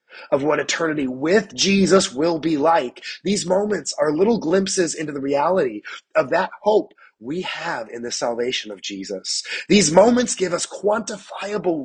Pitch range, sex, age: 150-205 Hz, male, 30-49